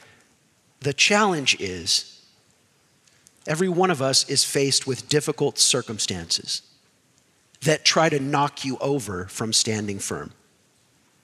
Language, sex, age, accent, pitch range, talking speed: English, male, 40-59, American, 165-230 Hz, 110 wpm